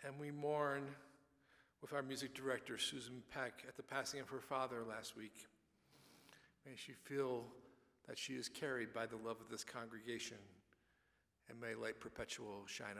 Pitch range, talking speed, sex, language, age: 115-140 Hz, 160 wpm, male, English, 50-69